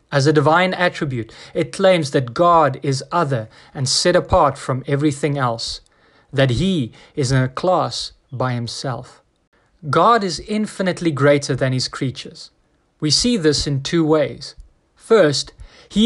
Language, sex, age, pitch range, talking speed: English, male, 30-49, 135-180 Hz, 145 wpm